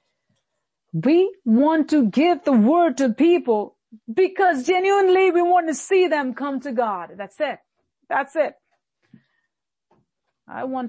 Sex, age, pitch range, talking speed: female, 40-59, 225-310 Hz, 130 wpm